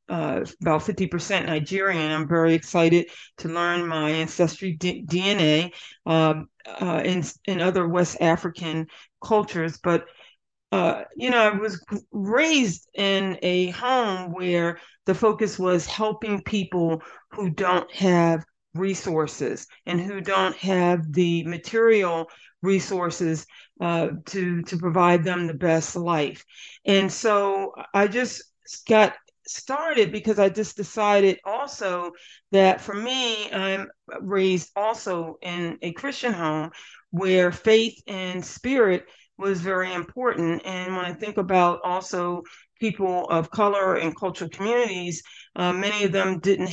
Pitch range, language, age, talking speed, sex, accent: 170-200 Hz, English, 40-59, 130 wpm, female, American